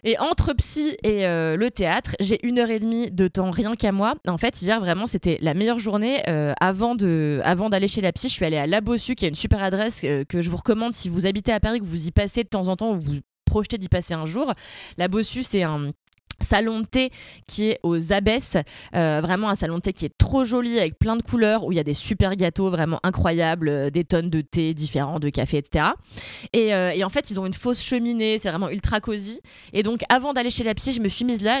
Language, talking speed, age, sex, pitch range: French, 260 wpm, 20-39, female, 180-230 Hz